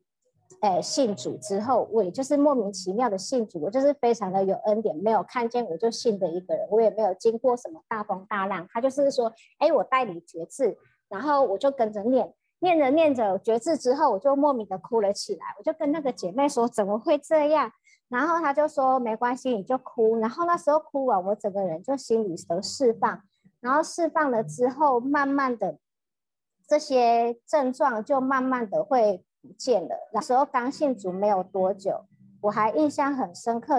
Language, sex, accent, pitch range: Chinese, male, American, 210-280 Hz